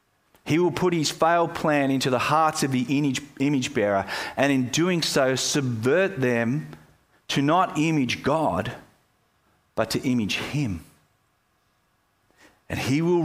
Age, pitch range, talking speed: 30-49, 105-145 Hz, 135 wpm